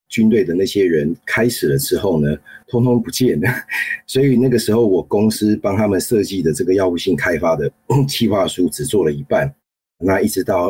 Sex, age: male, 30-49